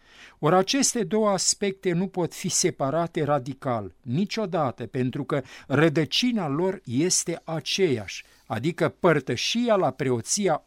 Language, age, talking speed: Romanian, 50-69, 115 wpm